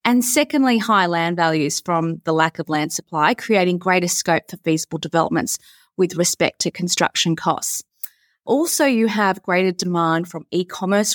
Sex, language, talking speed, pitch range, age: female, English, 155 wpm, 165-220 Hz, 30-49